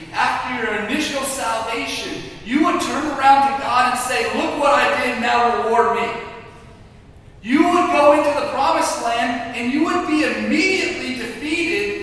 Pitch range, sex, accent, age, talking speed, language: 200-295 Hz, male, American, 40-59, 160 wpm, English